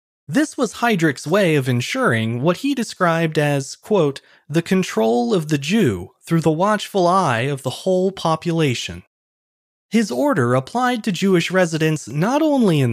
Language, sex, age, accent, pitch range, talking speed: English, male, 20-39, American, 125-205 Hz, 155 wpm